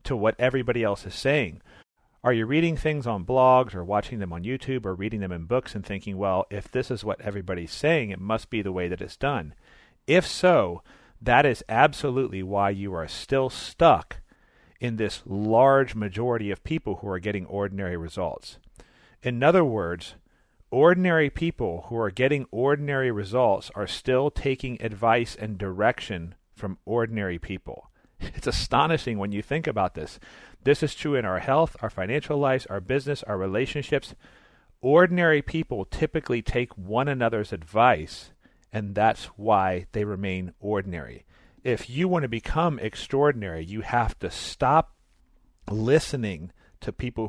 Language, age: English, 40-59